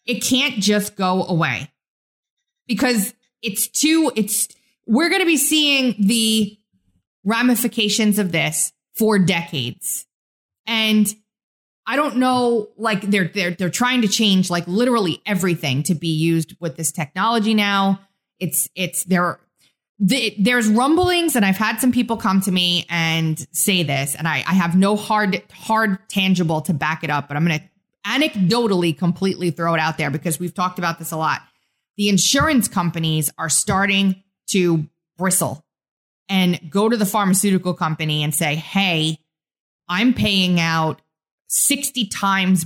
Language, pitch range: English, 165-220 Hz